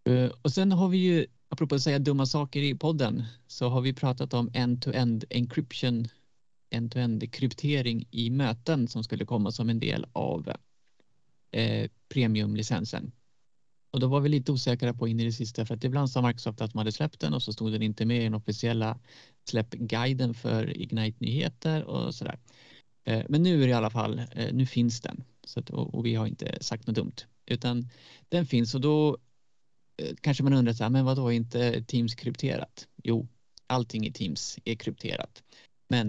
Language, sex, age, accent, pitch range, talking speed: Swedish, male, 30-49, native, 115-135 Hz, 185 wpm